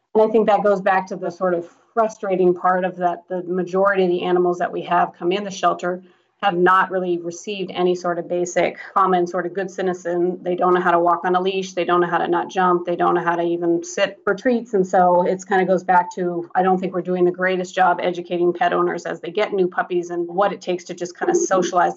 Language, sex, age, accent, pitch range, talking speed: English, female, 30-49, American, 175-190 Hz, 265 wpm